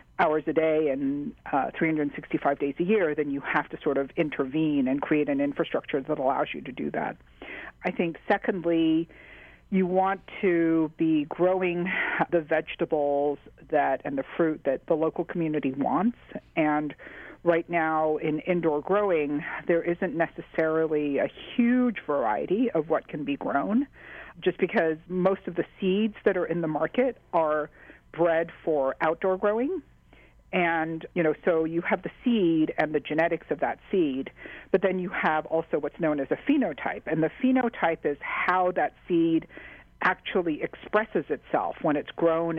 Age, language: 50-69, English